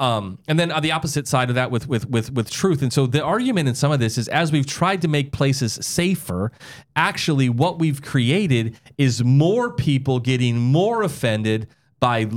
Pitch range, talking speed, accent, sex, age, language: 115-155 Hz, 200 wpm, American, male, 30-49, English